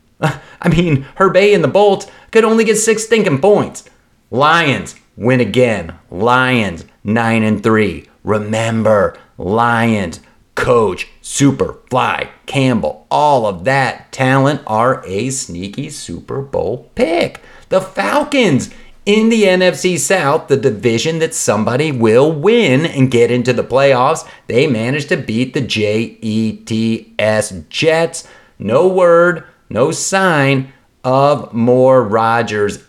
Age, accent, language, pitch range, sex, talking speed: 30-49, American, English, 115-175 Hz, male, 120 wpm